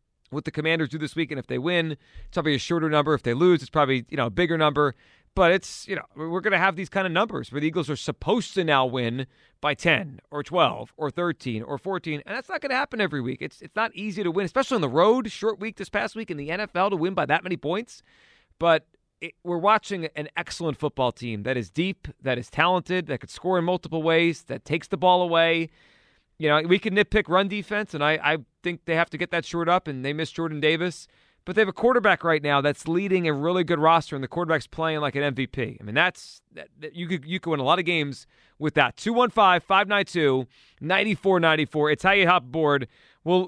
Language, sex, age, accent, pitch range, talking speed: English, male, 30-49, American, 150-190 Hz, 260 wpm